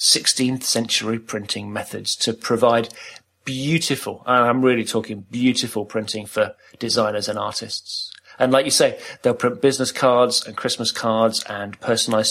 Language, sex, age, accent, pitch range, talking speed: English, male, 30-49, British, 110-130 Hz, 145 wpm